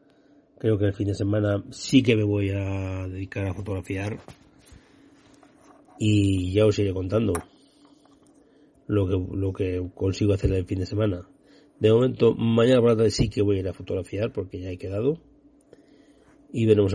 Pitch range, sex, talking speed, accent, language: 95-110 Hz, male, 165 wpm, Spanish, Spanish